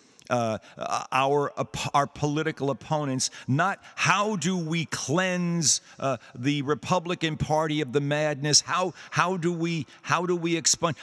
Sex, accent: male, American